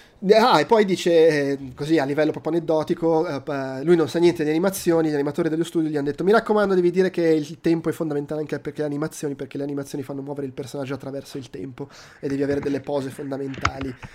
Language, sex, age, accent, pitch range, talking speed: Italian, male, 20-39, native, 145-170 Hz, 215 wpm